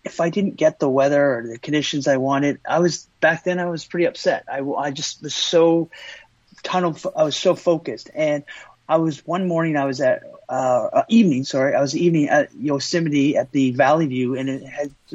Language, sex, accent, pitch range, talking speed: English, male, American, 145-175 Hz, 215 wpm